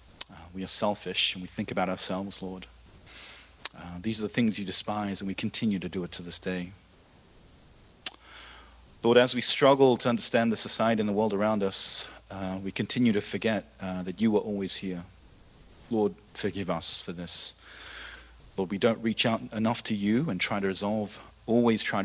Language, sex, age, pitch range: Korean, male, 40-59, 90-110 Hz